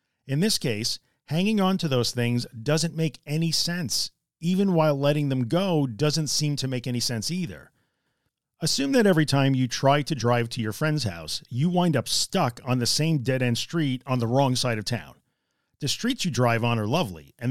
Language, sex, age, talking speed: English, male, 40-59, 200 wpm